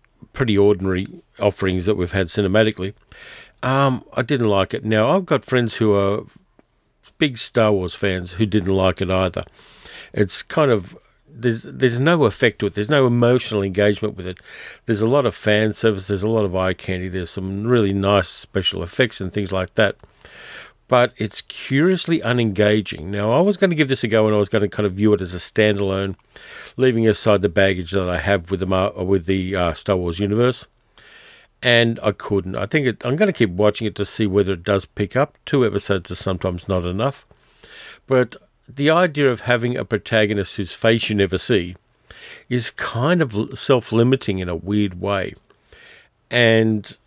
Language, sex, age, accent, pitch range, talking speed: English, male, 50-69, Australian, 95-115 Hz, 185 wpm